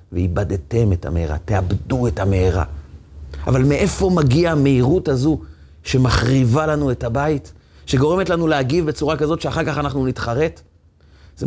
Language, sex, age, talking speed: Hebrew, male, 30-49, 130 wpm